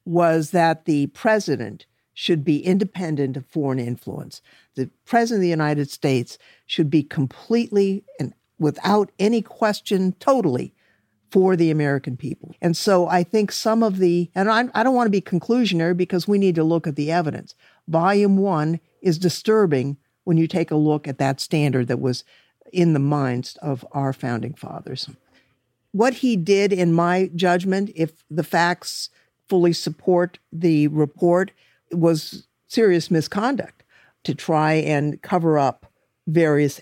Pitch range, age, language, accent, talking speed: 140-180 Hz, 50-69, English, American, 155 wpm